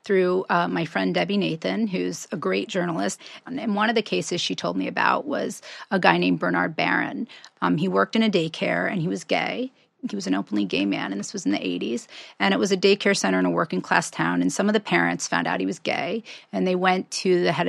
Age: 30-49